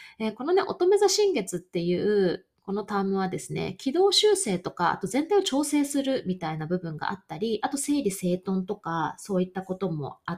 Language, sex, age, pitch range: Japanese, female, 20-39, 175-290 Hz